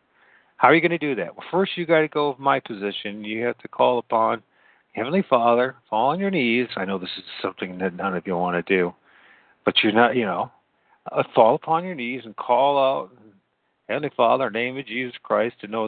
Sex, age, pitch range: male, 50-69, 105-135 Hz